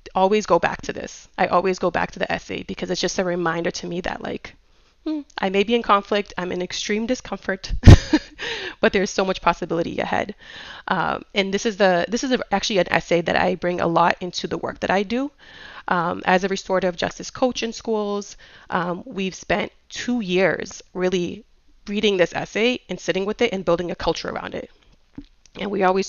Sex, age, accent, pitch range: female, 30-49, American, 175-205 Hz